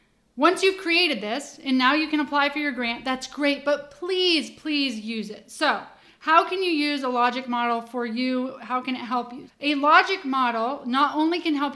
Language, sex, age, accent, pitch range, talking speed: English, female, 30-49, American, 245-300 Hz, 210 wpm